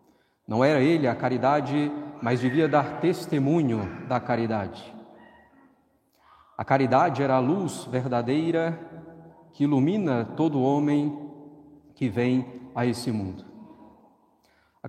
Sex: male